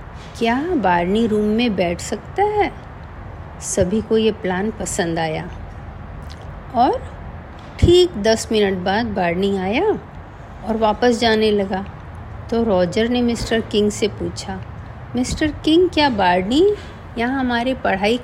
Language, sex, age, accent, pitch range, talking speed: Hindi, female, 50-69, native, 195-260 Hz, 125 wpm